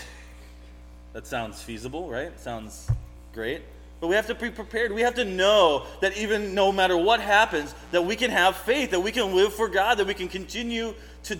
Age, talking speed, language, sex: 30-49, 200 wpm, English, male